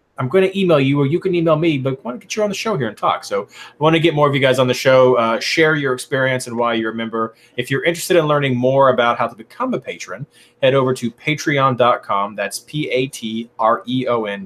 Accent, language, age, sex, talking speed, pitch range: American, English, 30-49, male, 255 wpm, 115-145 Hz